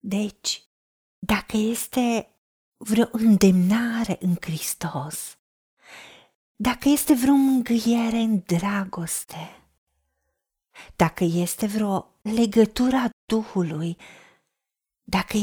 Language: Romanian